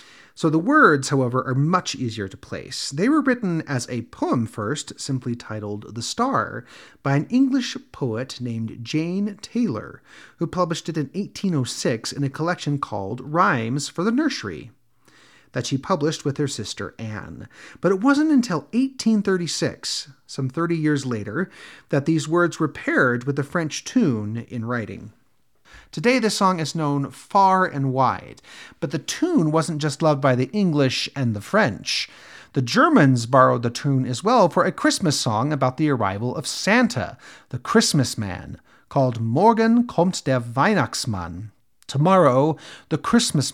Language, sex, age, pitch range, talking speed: English, male, 30-49, 125-185 Hz, 155 wpm